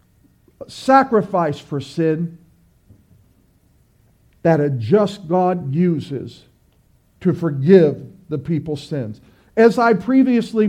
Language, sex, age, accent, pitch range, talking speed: English, male, 50-69, American, 155-230 Hz, 90 wpm